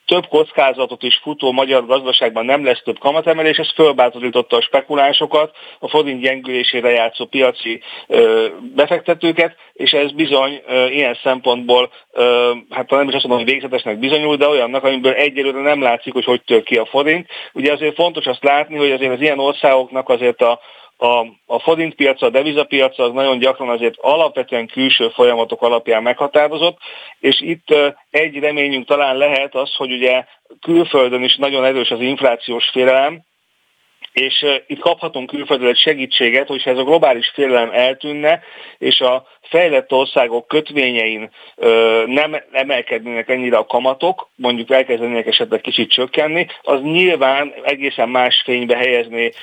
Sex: male